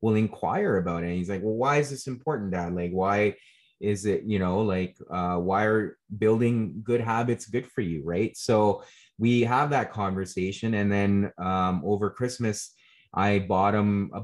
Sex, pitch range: male, 85-110 Hz